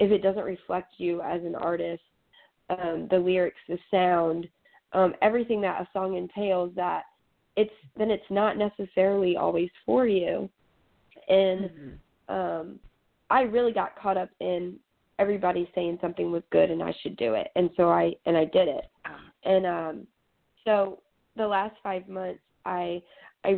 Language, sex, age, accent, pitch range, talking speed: English, female, 20-39, American, 170-200 Hz, 160 wpm